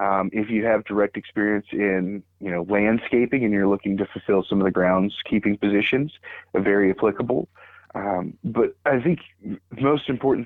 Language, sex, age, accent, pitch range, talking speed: English, male, 30-49, American, 95-115 Hz, 165 wpm